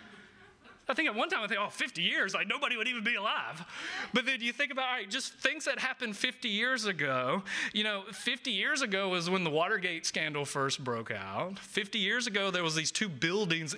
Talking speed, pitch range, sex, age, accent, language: 220 wpm, 155-205 Hz, male, 30-49, American, English